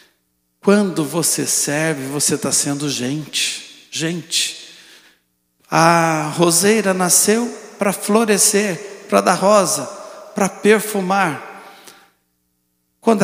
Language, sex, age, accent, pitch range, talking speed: Portuguese, male, 60-79, Brazilian, 145-200 Hz, 85 wpm